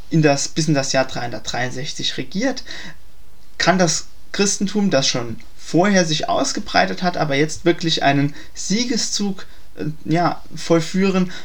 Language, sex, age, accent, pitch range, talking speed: German, male, 20-39, German, 145-180 Hz, 110 wpm